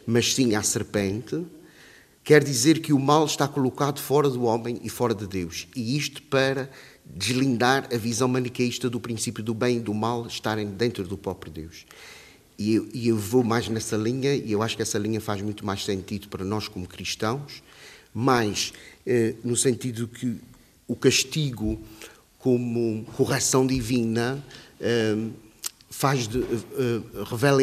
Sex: male